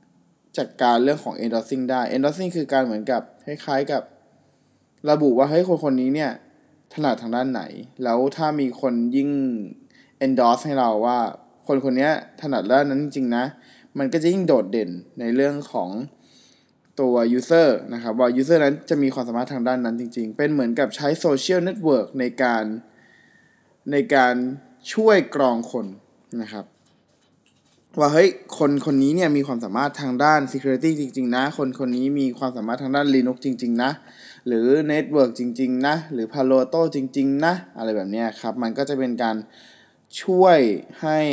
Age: 20-39